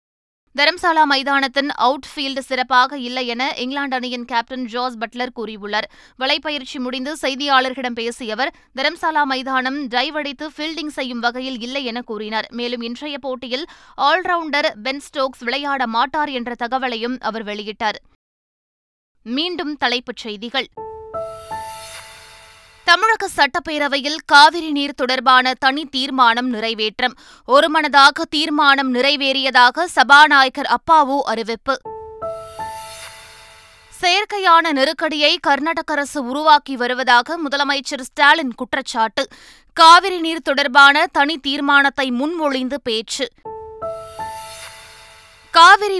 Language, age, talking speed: Tamil, 20-39, 90 wpm